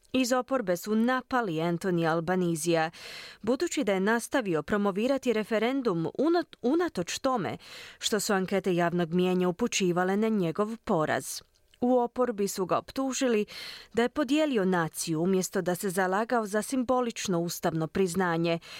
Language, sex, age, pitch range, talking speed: Croatian, female, 20-39, 180-245 Hz, 130 wpm